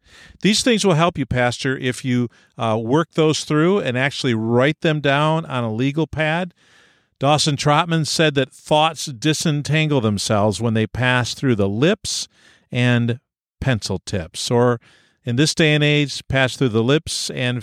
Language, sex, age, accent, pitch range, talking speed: English, male, 50-69, American, 110-150 Hz, 165 wpm